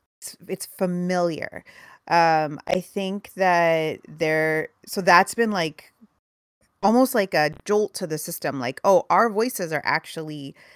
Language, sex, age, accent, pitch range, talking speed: English, female, 30-49, American, 155-190 Hz, 135 wpm